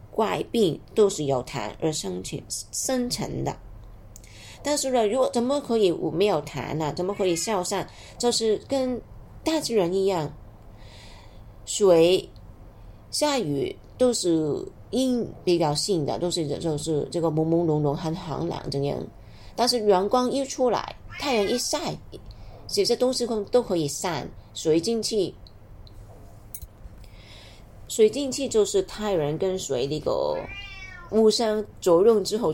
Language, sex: Chinese, female